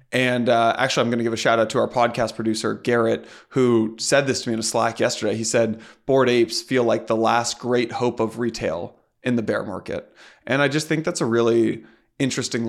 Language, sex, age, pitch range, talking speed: English, male, 20-39, 115-135 Hz, 225 wpm